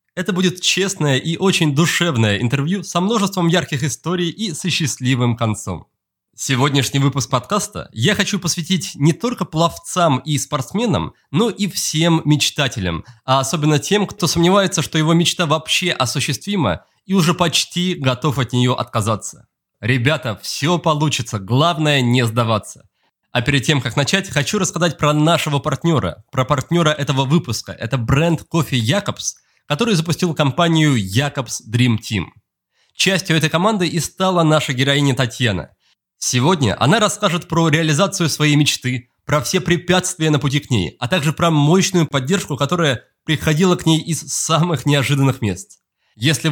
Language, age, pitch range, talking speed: Russian, 20-39, 130-175 Hz, 145 wpm